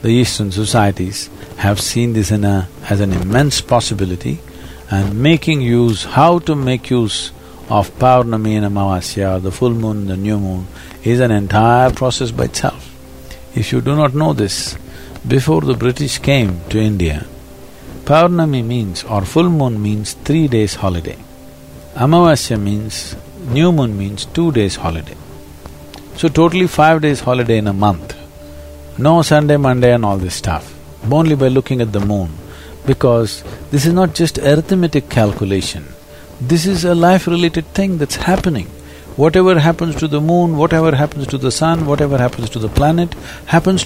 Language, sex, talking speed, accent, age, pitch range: English, male, 155 wpm, Indian, 50-69, 95-145 Hz